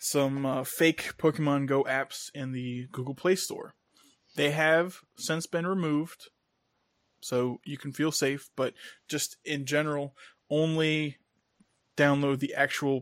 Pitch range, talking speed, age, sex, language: 130-155 Hz, 135 wpm, 20-39, male, English